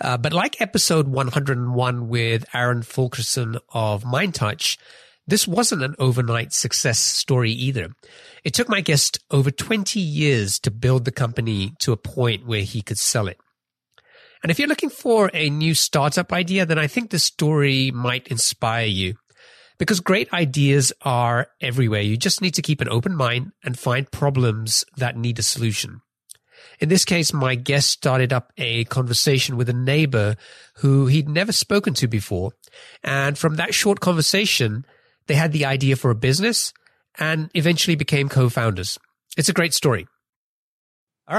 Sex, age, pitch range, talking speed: male, 30-49, 120-160 Hz, 160 wpm